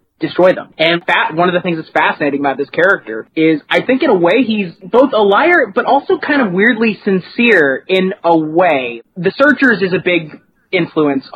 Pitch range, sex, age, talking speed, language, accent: 145-185 Hz, male, 30-49, 195 wpm, English, American